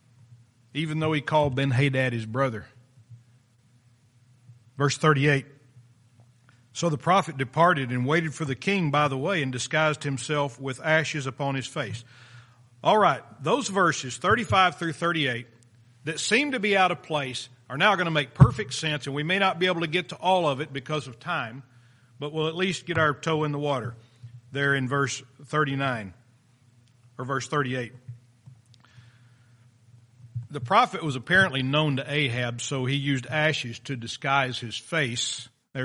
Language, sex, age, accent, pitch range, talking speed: English, male, 50-69, American, 120-155 Hz, 165 wpm